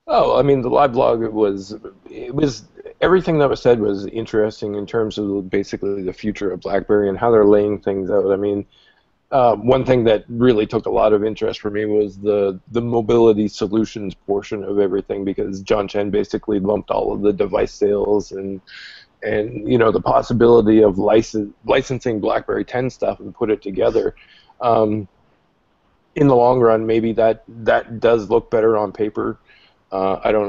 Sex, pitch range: male, 100-120 Hz